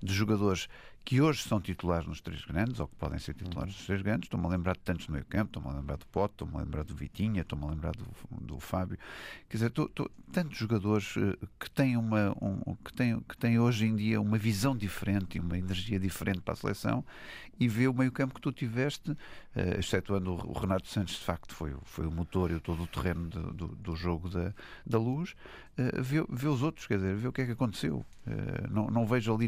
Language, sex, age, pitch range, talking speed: Portuguese, male, 50-69, 90-115 Hz, 240 wpm